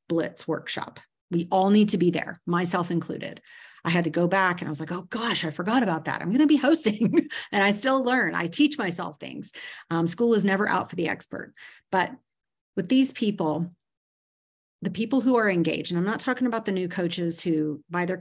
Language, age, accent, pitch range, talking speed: English, 40-59, American, 165-215 Hz, 220 wpm